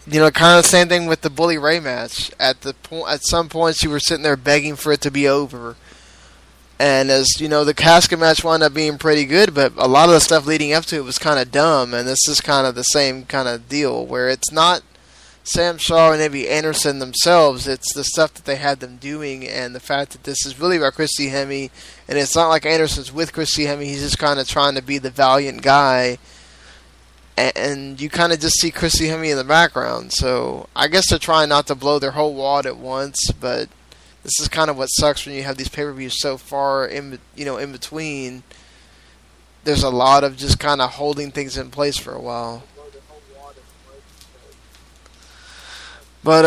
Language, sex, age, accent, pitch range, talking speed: English, male, 10-29, American, 125-150 Hz, 215 wpm